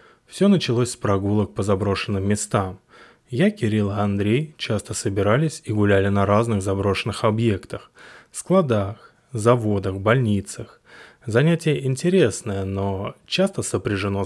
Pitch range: 100-120 Hz